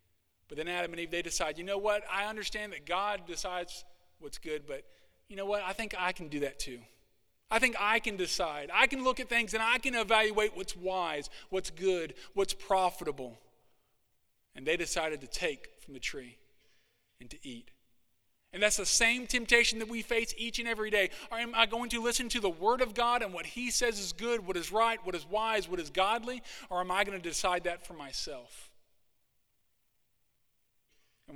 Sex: male